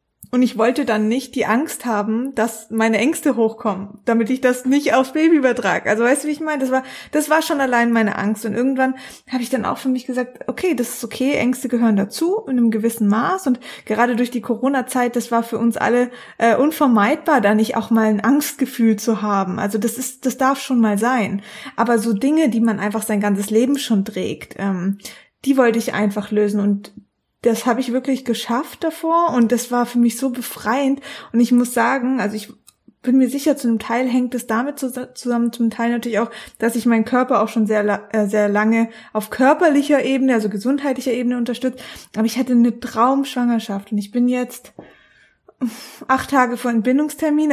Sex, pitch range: female, 225-260 Hz